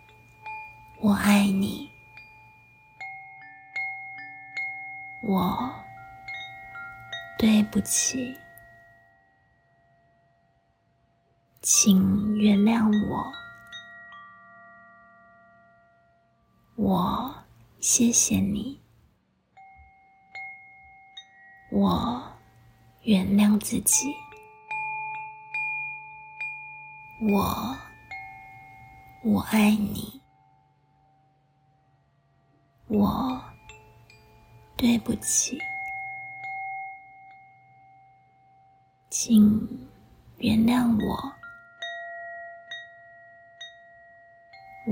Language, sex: Chinese, female